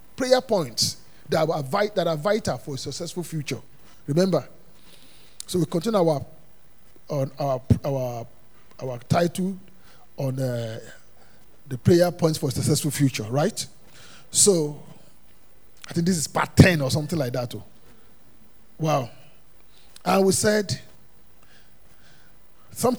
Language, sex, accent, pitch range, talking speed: English, male, Nigerian, 140-185 Hz, 125 wpm